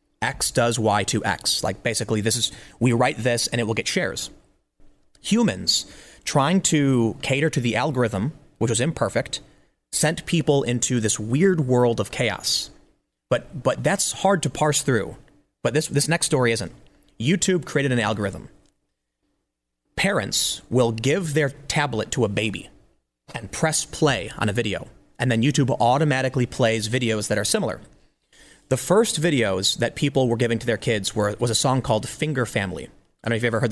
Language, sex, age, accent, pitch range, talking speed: English, male, 30-49, American, 110-145 Hz, 175 wpm